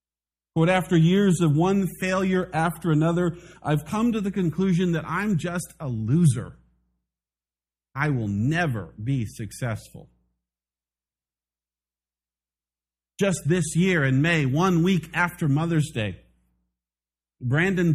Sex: male